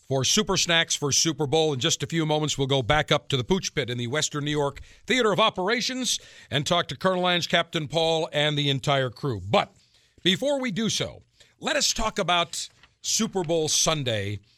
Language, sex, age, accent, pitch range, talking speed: English, male, 50-69, American, 135-190 Hz, 205 wpm